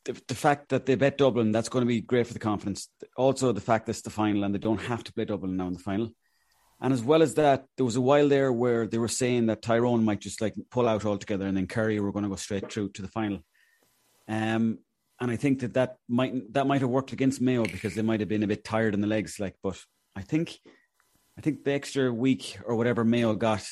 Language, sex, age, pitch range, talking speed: English, male, 30-49, 105-130 Hz, 265 wpm